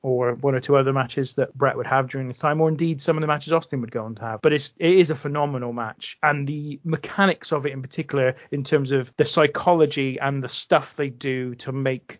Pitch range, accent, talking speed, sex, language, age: 130-170 Hz, British, 250 wpm, male, English, 30-49